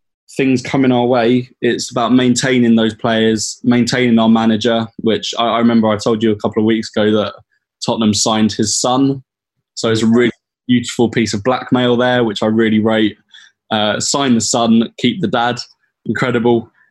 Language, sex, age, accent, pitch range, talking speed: English, male, 20-39, British, 105-120 Hz, 175 wpm